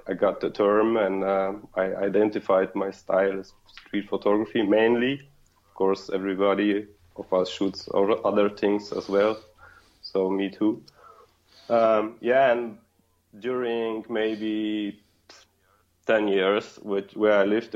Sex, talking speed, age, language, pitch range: male, 125 wpm, 20-39, English, 95-105 Hz